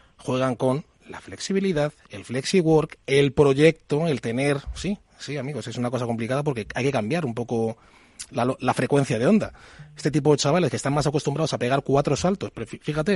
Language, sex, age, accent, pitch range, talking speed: Spanish, male, 30-49, Spanish, 125-170 Hz, 190 wpm